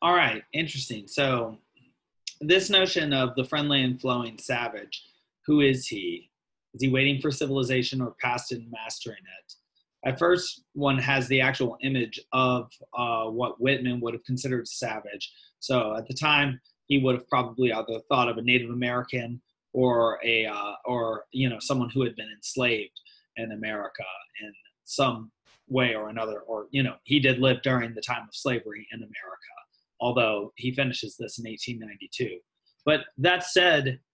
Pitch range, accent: 120-150 Hz, American